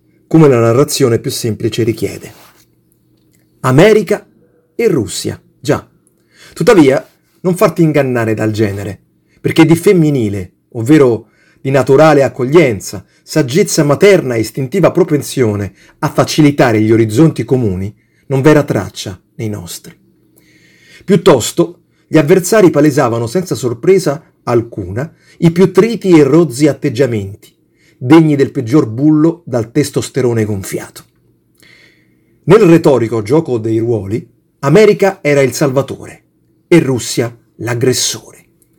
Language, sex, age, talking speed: Italian, male, 40-59, 110 wpm